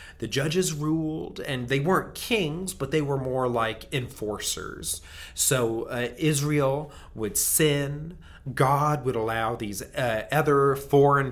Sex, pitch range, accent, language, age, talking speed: male, 115-145 Hz, American, English, 30-49, 135 wpm